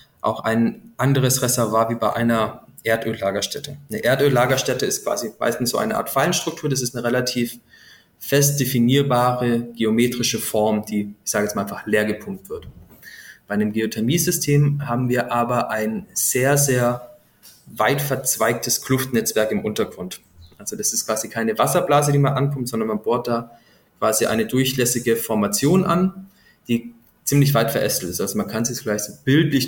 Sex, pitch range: male, 115-140 Hz